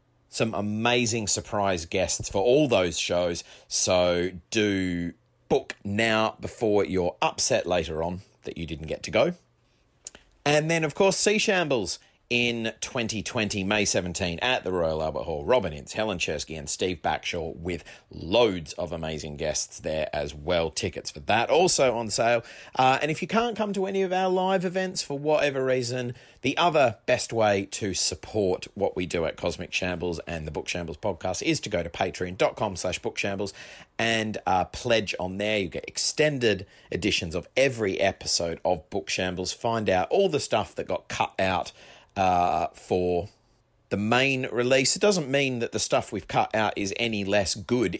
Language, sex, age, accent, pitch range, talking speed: English, male, 30-49, Australian, 90-125 Hz, 175 wpm